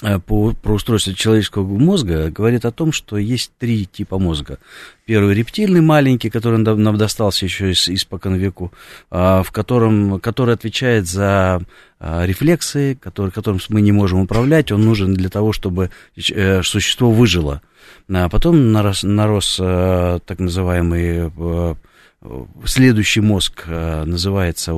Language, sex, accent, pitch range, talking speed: Russian, male, native, 95-120 Hz, 120 wpm